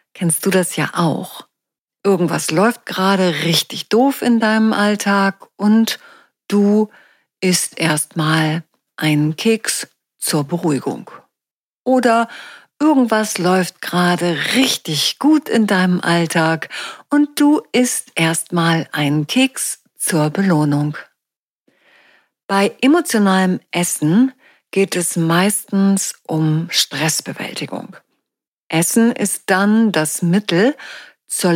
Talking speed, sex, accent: 100 wpm, female, German